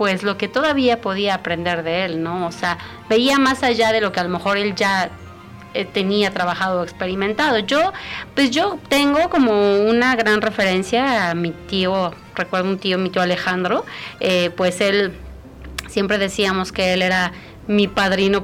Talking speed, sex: 175 wpm, female